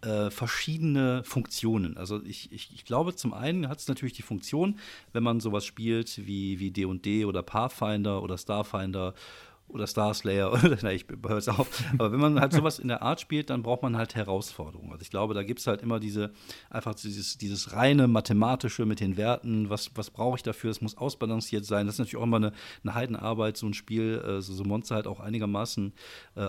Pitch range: 100-120 Hz